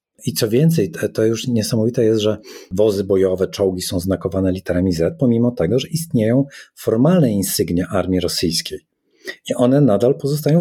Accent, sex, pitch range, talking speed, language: native, male, 100-125 Hz, 155 wpm, Polish